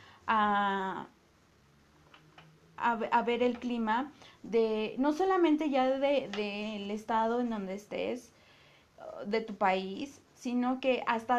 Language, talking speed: Spanish, 120 wpm